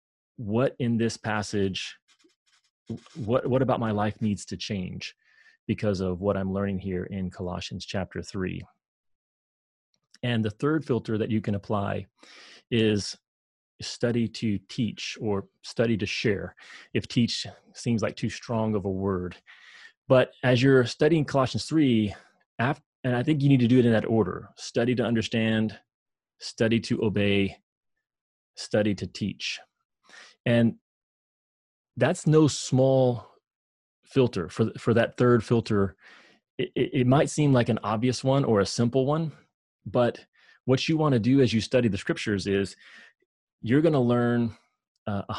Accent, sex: American, male